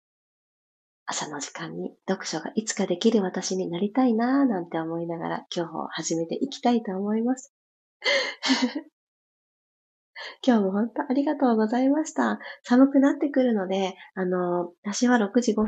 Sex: female